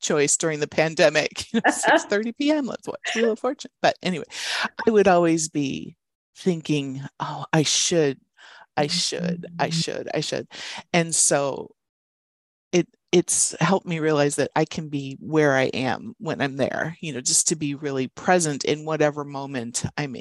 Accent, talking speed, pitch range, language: American, 170 wpm, 145-185 Hz, English